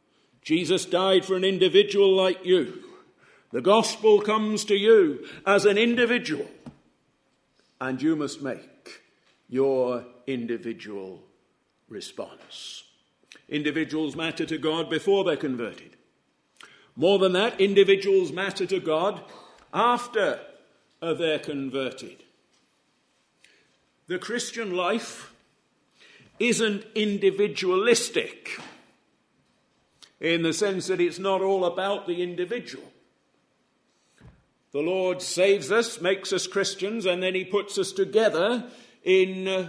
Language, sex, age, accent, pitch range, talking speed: English, male, 50-69, British, 180-245 Hz, 105 wpm